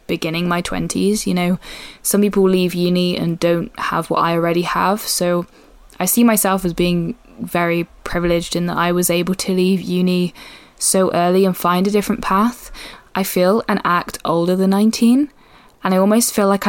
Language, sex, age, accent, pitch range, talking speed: English, female, 10-29, British, 180-230 Hz, 185 wpm